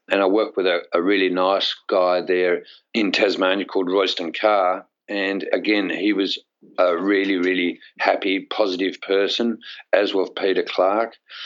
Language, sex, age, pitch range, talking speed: English, male, 50-69, 90-110 Hz, 150 wpm